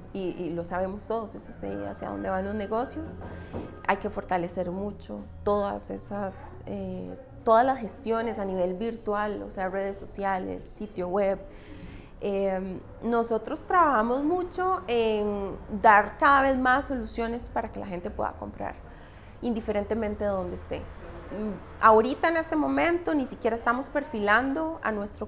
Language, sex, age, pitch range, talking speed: English, female, 30-49, 175-240 Hz, 145 wpm